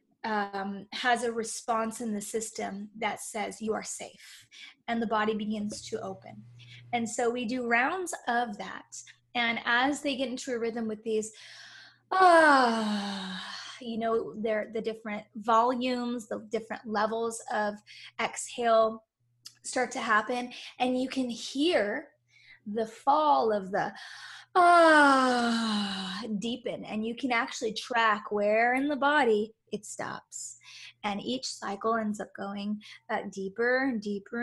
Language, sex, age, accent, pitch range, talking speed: English, female, 20-39, American, 210-250 Hz, 140 wpm